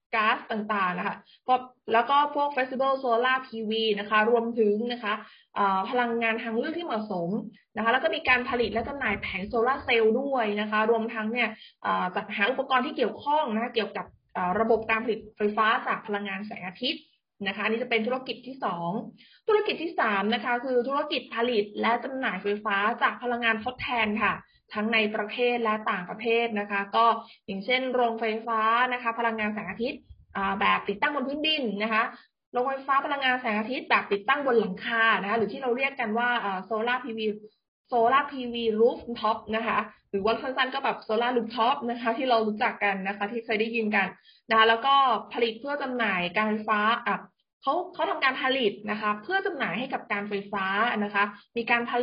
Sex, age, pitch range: female, 20-39, 215-255 Hz